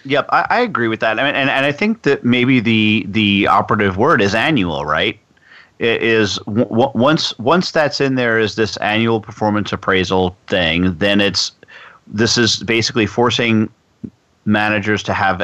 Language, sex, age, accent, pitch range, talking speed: English, male, 40-59, American, 100-120 Hz, 170 wpm